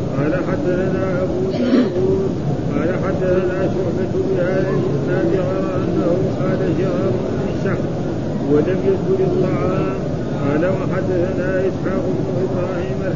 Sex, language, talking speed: male, Arabic, 60 wpm